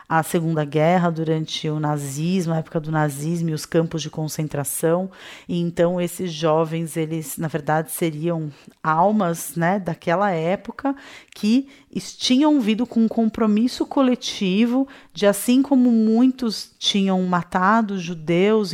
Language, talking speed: Portuguese, 130 wpm